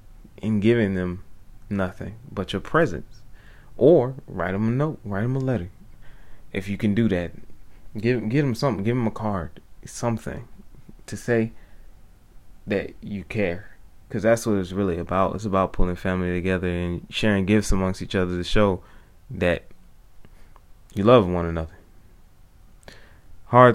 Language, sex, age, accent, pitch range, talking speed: English, male, 20-39, American, 95-110 Hz, 150 wpm